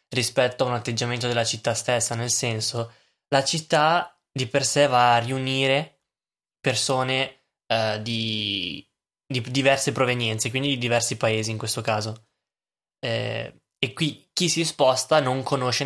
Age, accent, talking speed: 10-29, native, 145 wpm